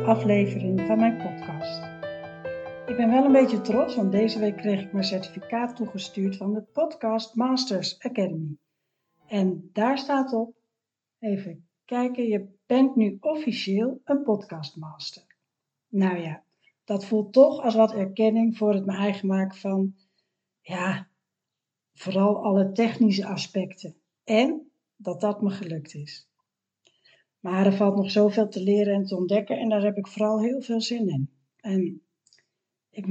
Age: 60-79